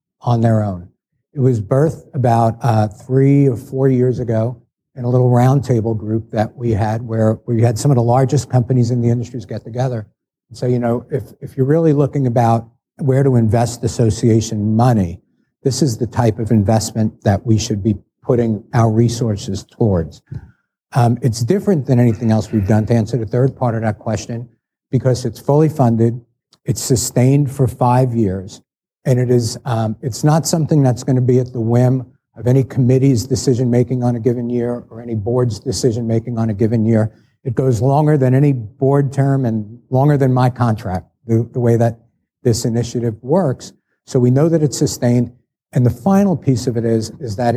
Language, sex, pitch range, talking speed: English, male, 115-130 Hz, 195 wpm